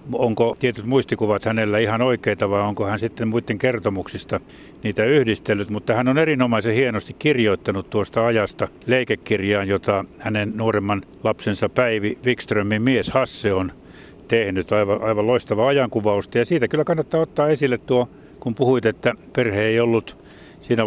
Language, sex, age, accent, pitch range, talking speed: Finnish, male, 60-79, native, 105-125 Hz, 145 wpm